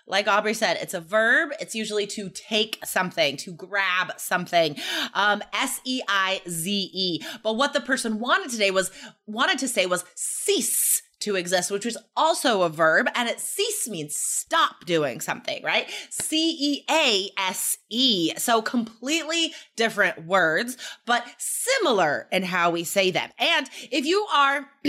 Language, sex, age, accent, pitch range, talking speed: English, female, 20-39, American, 195-280 Hz, 160 wpm